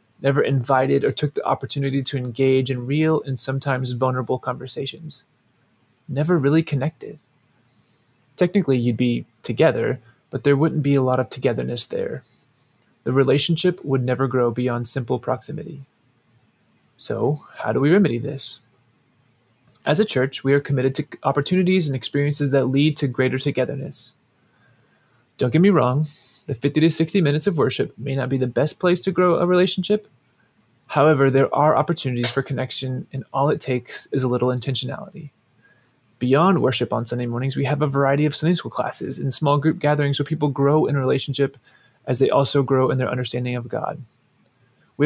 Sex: male